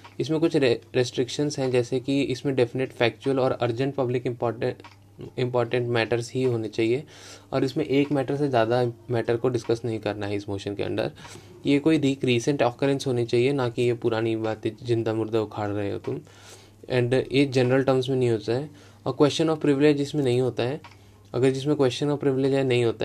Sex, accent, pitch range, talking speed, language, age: male, Indian, 115-140 Hz, 155 wpm, English, 20-39